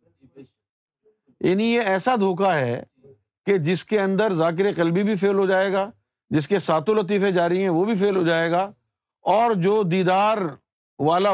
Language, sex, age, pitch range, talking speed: Urdu, male, 50-69, 125-200 Hz, 170 wpm